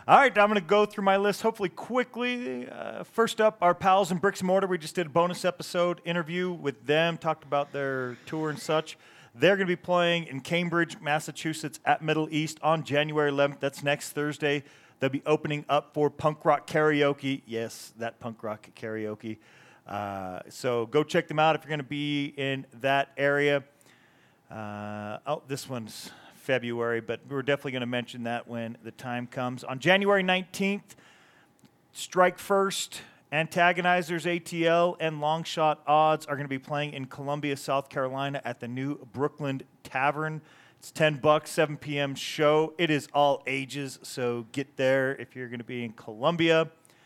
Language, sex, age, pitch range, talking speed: English, male, 40-59, 135-170 Hz, 175 wpm